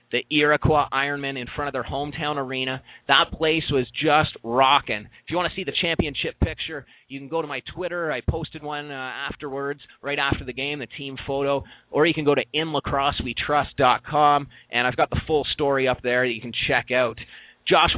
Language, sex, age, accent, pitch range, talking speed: English, male, 30-49, American, 120-150 Hz, 200 wpm